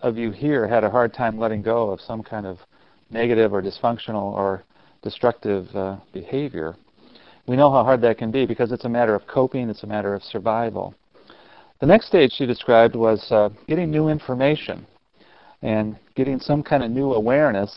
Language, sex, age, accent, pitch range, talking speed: English, male, 40-59, American, 105-125 Hz, 185 wpm